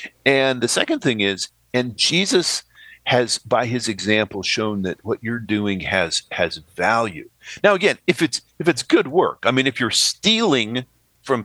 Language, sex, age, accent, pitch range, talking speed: English, male, 50-69, American, 105-165 Hz, 175 wpm